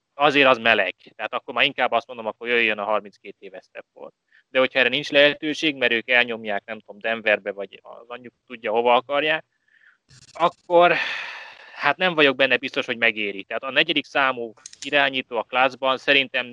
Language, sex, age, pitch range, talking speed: Hungarian, male, 20-39, 120-155 Hz, 175 wpm